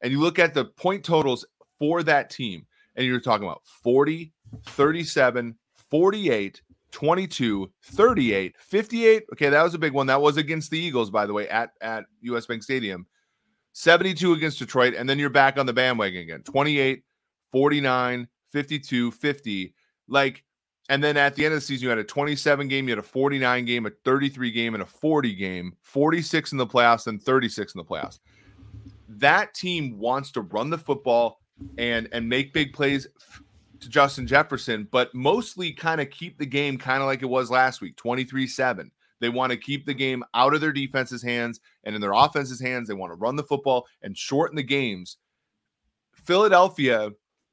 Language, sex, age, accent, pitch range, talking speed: English, male, 30-49, American, 120-145 Hz, 185 wpm